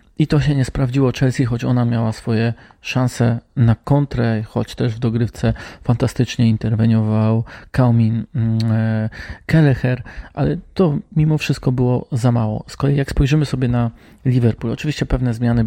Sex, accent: male, native